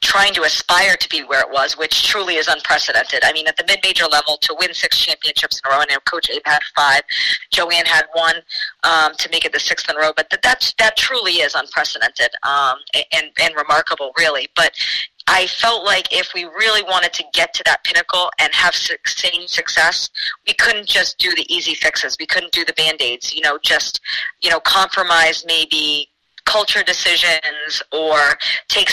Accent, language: American, English